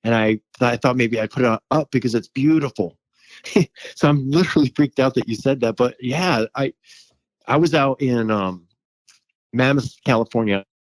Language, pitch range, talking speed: English, 105-125 Hz, 170 wpm